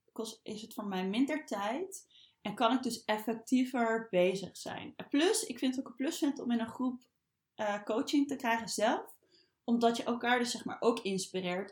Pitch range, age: 195-245 Hz, 20-39